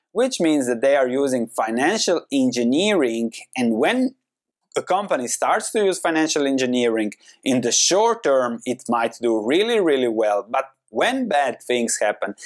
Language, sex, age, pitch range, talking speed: English, male, 30-49, 120-195 Hz, 155 wpm